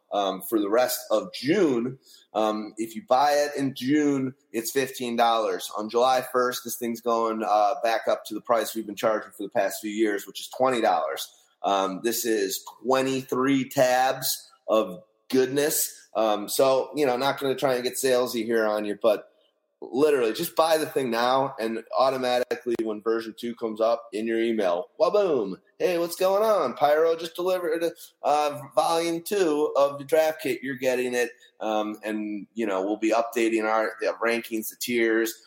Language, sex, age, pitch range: English, male, 30-49, 110-135 Hz